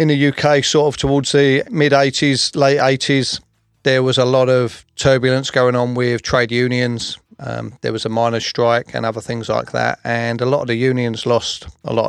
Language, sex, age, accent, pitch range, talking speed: English, male, 30-49, British, 115-130 Hz, 205 wpm